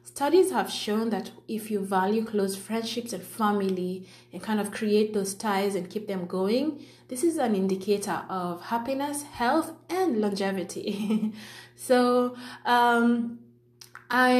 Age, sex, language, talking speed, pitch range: 20-39, female, English, 140 wpm, 185-225 Hz